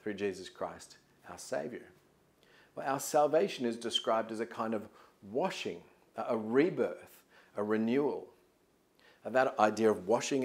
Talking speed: 140 wpm